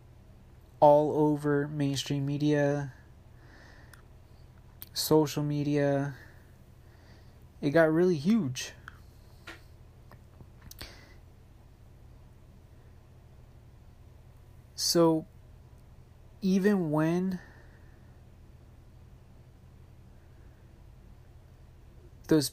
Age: 30-49